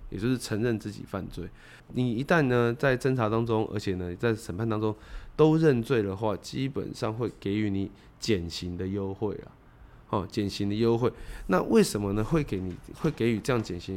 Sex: male